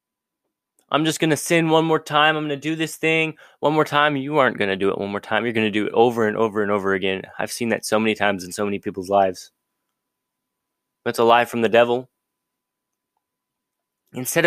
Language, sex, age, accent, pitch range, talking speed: English, male, 20-39, American, 120-140 Hz, 230 wpm